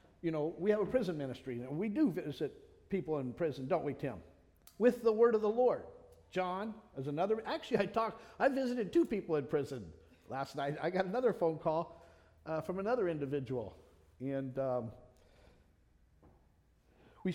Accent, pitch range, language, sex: American, 150-235 Hz, English, male